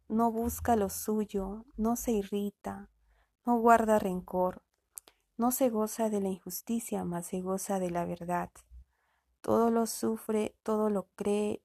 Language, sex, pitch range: Spanish, female, 185-220 Hz